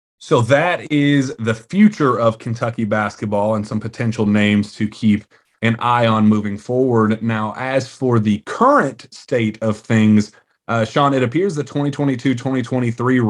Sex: male